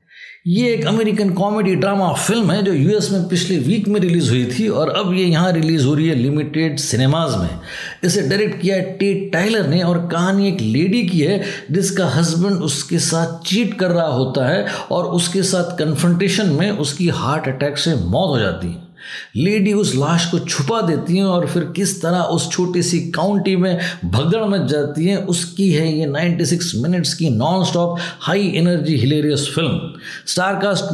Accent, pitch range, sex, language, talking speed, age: native, 155-190 Hz, male, Hindi, 185 wpm, 50-69